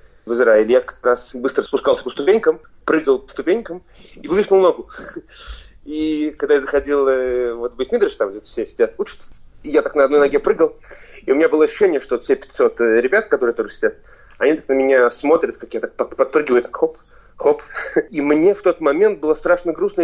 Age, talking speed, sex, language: 30-49, 190 wpm, male, Russian